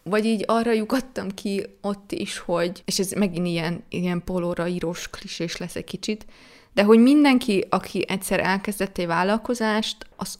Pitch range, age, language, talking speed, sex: 185-245 Hz, 20-39, Hungarian, 160 wpm, female